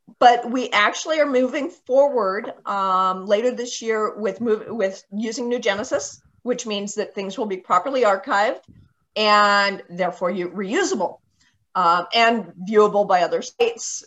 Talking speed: 145 wpm